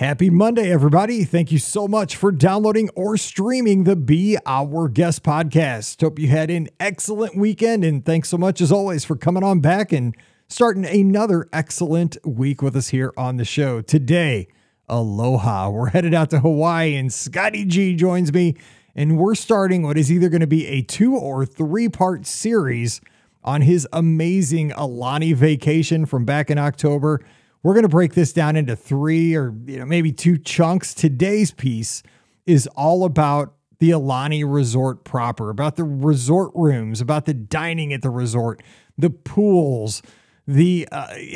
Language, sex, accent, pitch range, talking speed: English, male, American, 140-180 Hz, 165 wpm